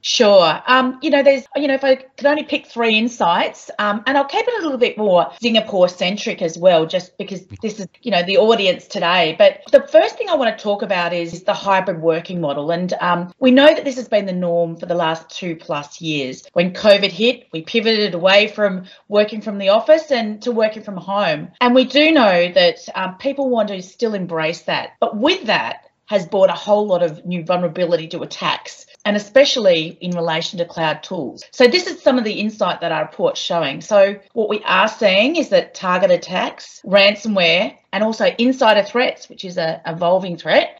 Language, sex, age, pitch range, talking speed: English, female, 30-49, 175-260 Hz, 210 wpm